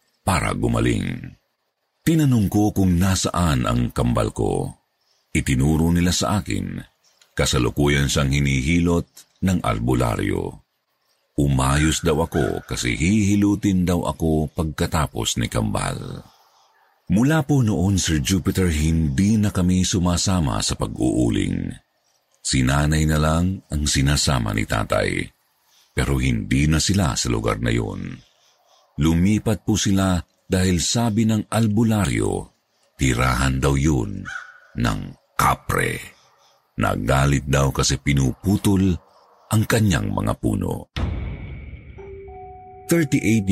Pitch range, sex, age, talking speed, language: 75-100 Hz, male, 50-69, 105 wpm, Filipino